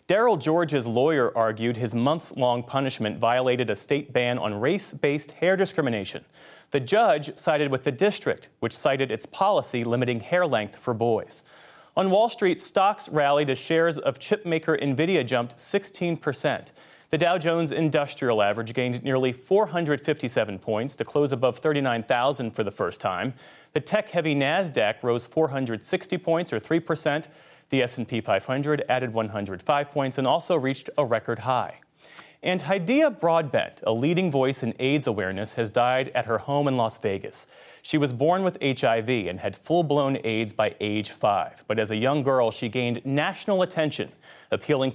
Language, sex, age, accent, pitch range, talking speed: English, male, 30-49, American, 115-155 Hz, 160 wpm